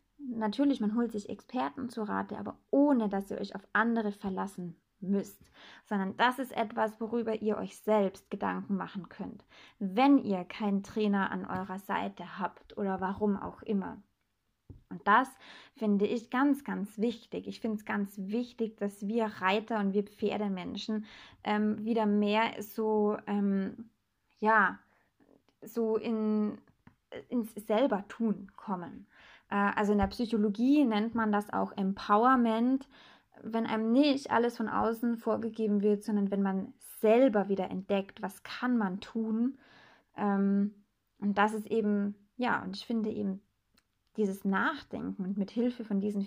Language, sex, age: German, female, 20-39